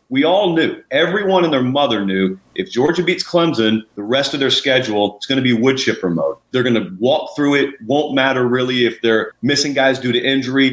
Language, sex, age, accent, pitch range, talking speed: English, male, 40-59, American, 115-145 Hz, 225 wpm